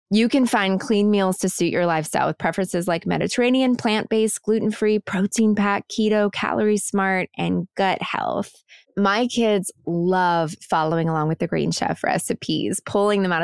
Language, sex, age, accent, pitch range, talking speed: English, female, 20-39, American, 170-215 Hz, 160 wpm